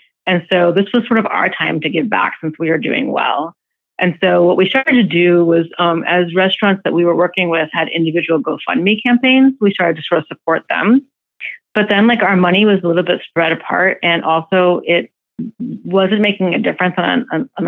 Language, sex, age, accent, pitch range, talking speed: English, female, 30-49, American, 165-200 Hz, 215 wpm